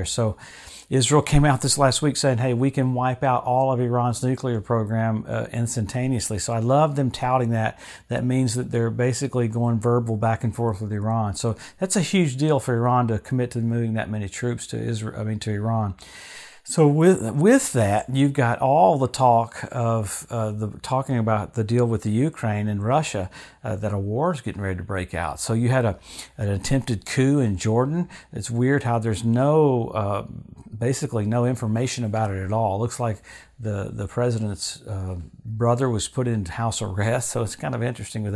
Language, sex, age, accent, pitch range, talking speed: English, male, 50-69, American, 115-135 Hz, 205 wpm